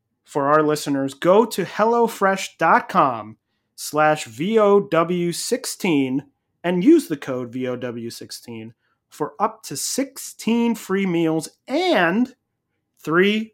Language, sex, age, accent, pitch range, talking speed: English, male, 30-49, American, 140-200 Hz, 85 wpm